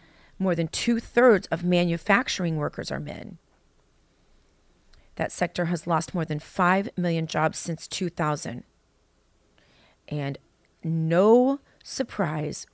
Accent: American